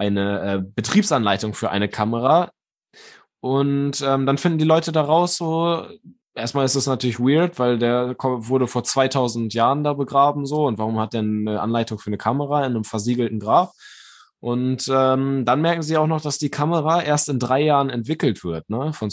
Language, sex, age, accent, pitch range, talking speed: German, male, 10-29, German, 110-145 Hz, 185 wpm